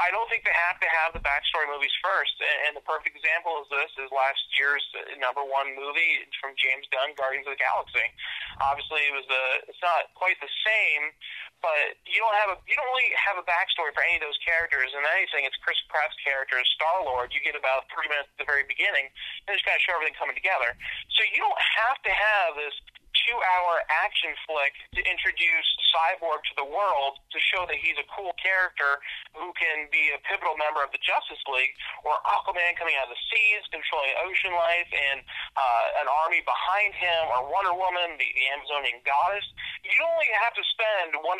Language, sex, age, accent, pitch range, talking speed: English, male, 30-49, American, 140-185 Hz, 210 wpm